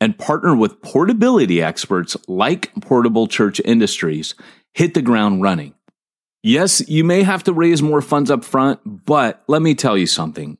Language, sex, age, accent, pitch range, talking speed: English, male, 30-49, American, 95-150 Hz, 165 wpm